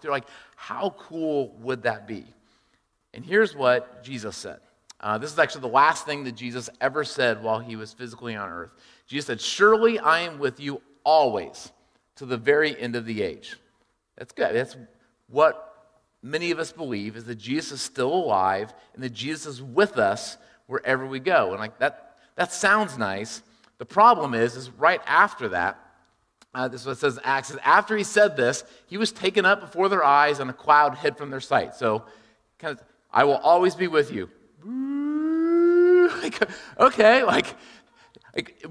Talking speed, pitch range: 180 wpm, 115-175 Hz